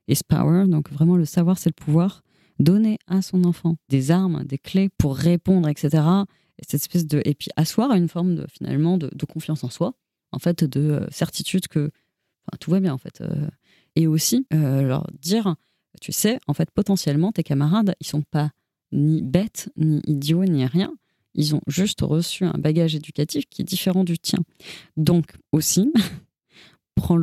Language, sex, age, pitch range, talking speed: French, female, 30-49, 150-180 Hz, 185 wpm